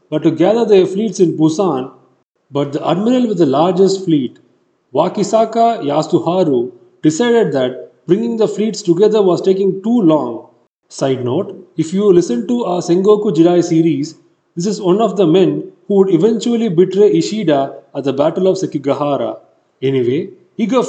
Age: 30-49